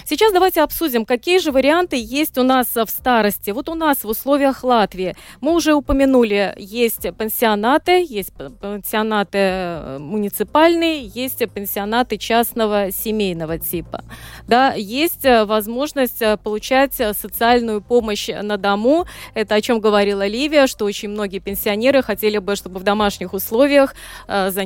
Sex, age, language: female, 20-39, Russian